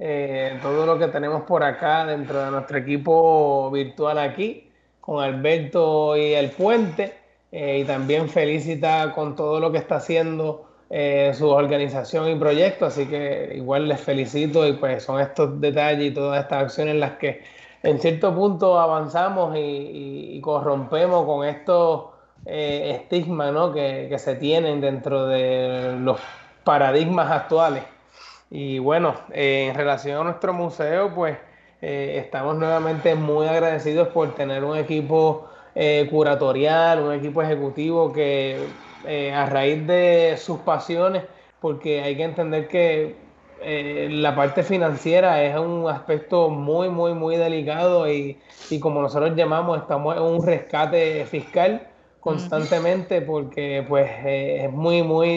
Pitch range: 140-165 Hz